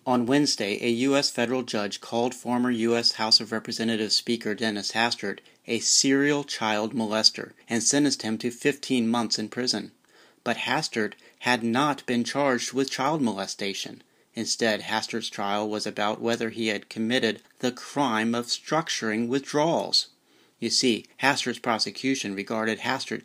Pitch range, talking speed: 110-130 Hz, 145 wpm